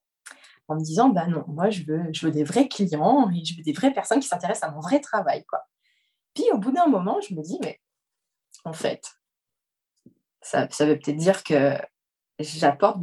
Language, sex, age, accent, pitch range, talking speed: French, female, 20-39, French, 165-225 Hz, 205 wpm